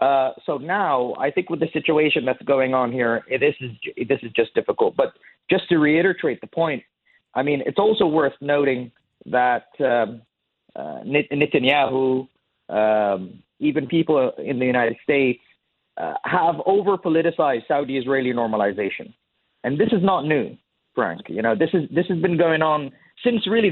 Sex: male